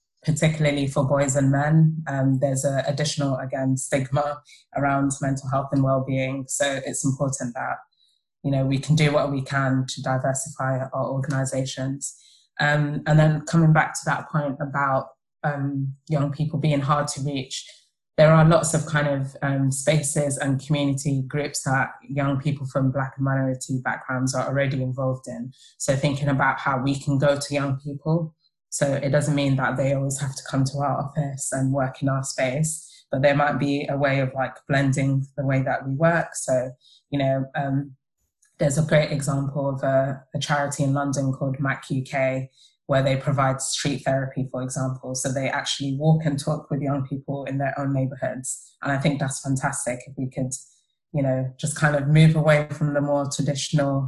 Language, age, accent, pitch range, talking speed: English, 20-39, British, 135-145 Hz, 190 wpm